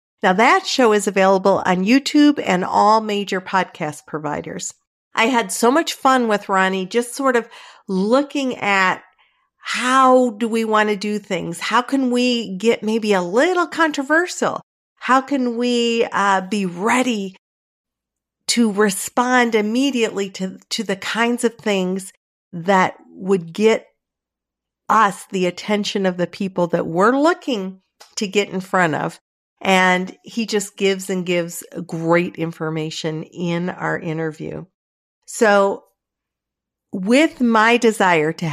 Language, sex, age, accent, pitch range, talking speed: English, female, 50-69, American, 185-235 Hz, 135 wpm